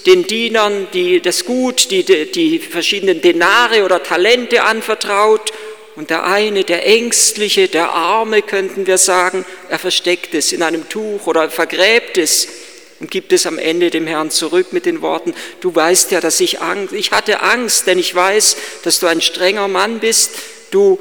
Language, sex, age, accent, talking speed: German, male, 50-69, German, 175 wpm